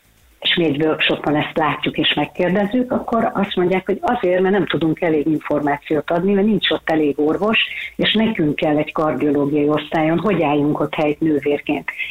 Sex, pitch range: female, 150-190 Hz